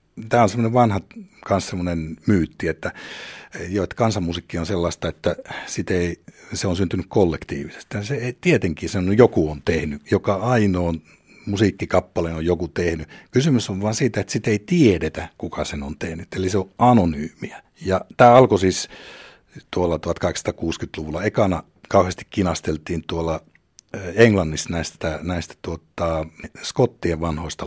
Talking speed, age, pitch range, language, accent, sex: 130 wpm, 60-79, 80-110 Hz, Finnish, native, male